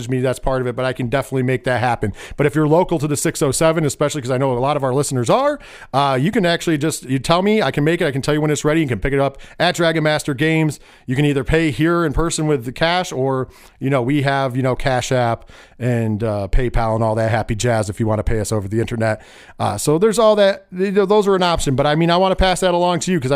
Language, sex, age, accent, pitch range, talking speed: English, male, 40-59, American, 125-165 Hz, 295 wpm